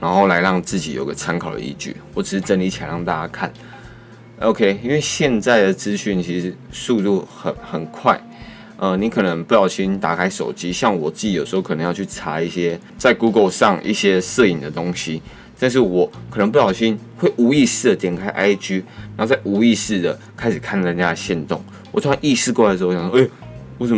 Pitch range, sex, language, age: 90-115 Hz, male, Chinese, 20-39